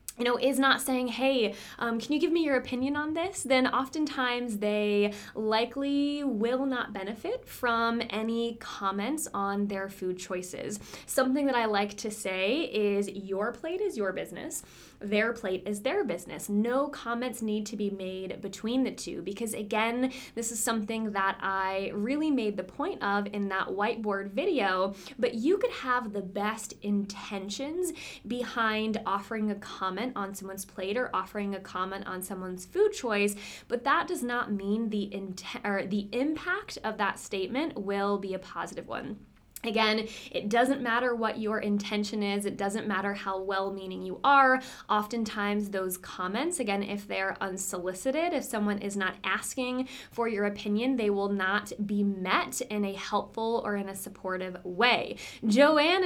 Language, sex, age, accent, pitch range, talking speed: English, female, 20-39, American, 200-255 Hz, 165 wpm